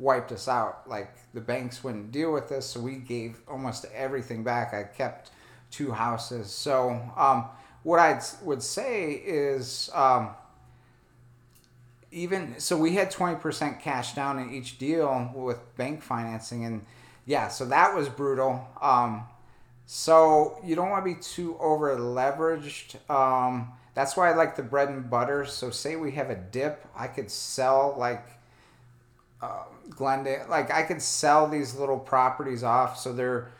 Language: English